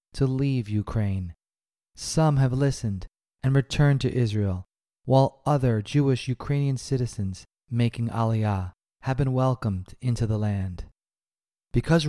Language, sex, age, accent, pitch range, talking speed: English, male, 30-49, American, 110-140 Hz, 120 wpm